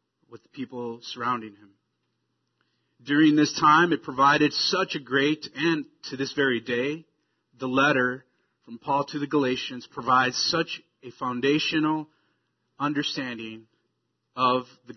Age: 30-49